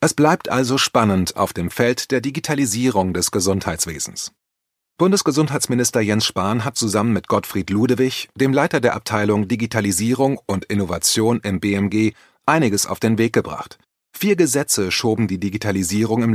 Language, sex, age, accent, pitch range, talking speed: German, male, 30-49, German, 100-130 Hz, 145 wpm